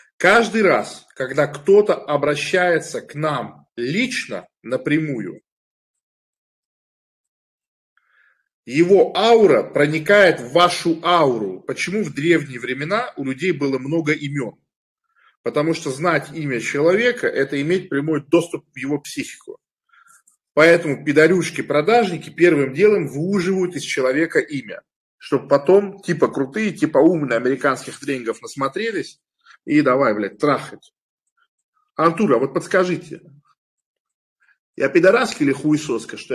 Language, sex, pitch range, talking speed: Russian, male, 150-205 Hz, 110 wpm